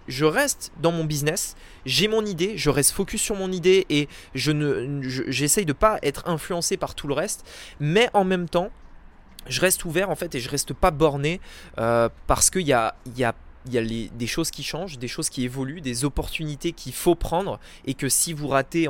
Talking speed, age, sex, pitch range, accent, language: 220 wpm, 20-39, male, 120-175 Hz, French, French